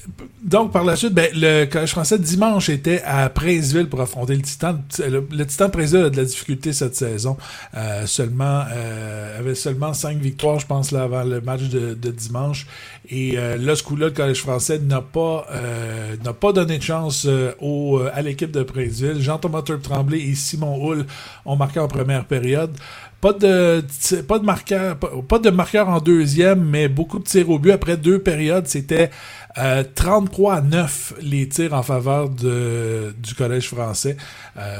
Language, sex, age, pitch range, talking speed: French, male, 50-69, 130-165 Hz, 190 wpm